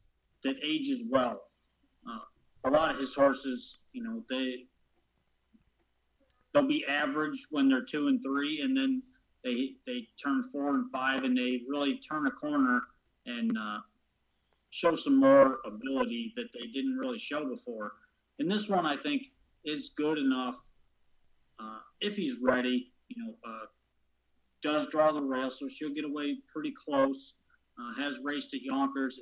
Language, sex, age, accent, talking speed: English, male, 40-59, American, 155 wpm